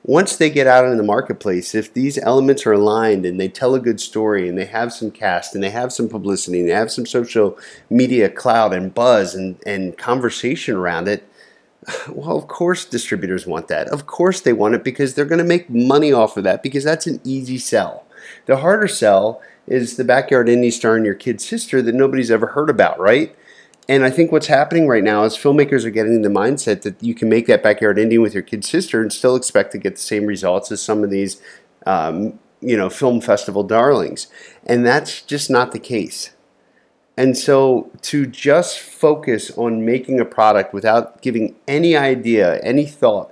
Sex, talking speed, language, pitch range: male, 205 wpm, English, 105-135 Hz